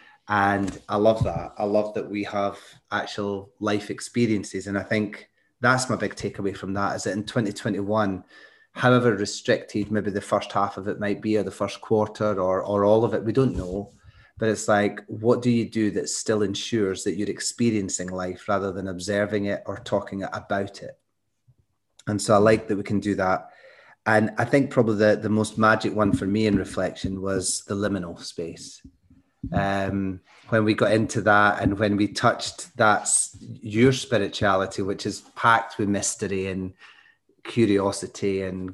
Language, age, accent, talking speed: English, 30-49, British, 180 wpm